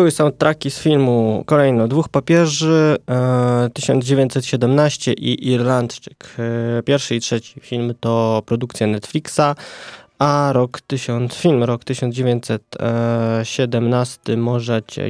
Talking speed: 95 wpm